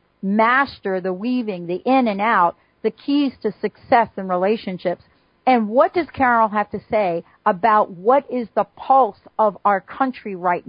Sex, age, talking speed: female, 50-69, 165 wpm